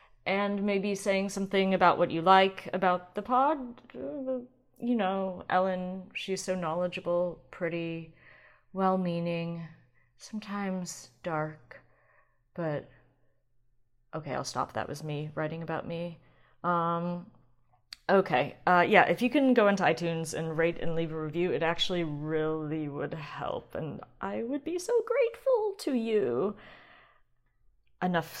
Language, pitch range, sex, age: English, 165-240 Hz, female, 30-49